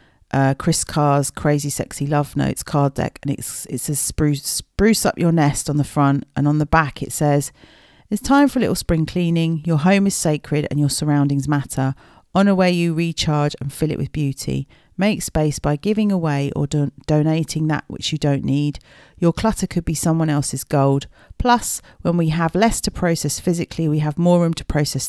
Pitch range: 140-160 Hz